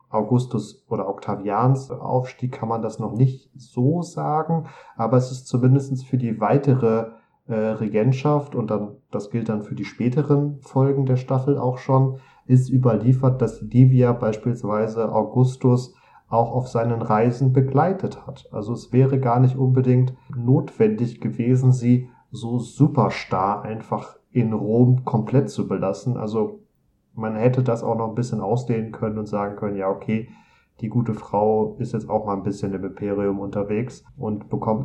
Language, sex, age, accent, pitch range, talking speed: German, male, 40-59, German, 115-135 Hz, 155 wpm